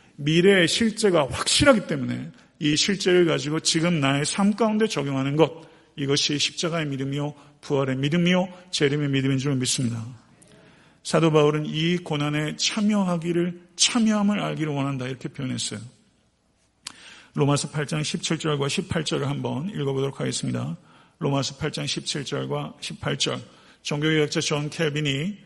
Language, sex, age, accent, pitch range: Korean, male, 50-69, native, 135-165 Hz